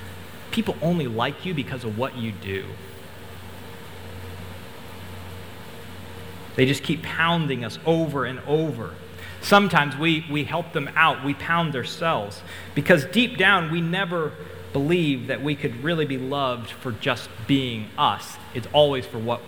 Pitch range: 95-150 Hz